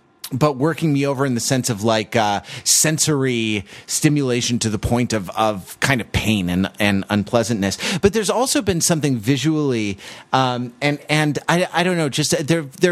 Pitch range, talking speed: 115-175 Hz, 180 wpm